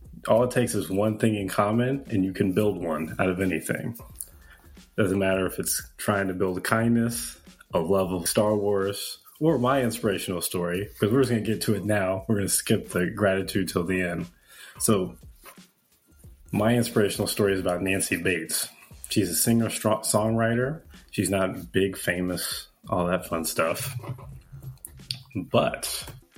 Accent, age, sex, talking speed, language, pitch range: American, 30-49, male, 165 wpm, English, 95-115 Hz